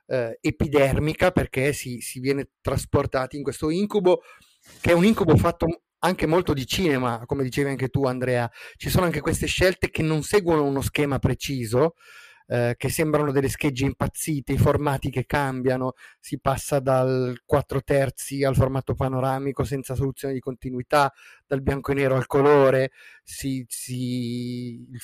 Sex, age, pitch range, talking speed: male, 30-49, 135-160 Hz, 155 wpm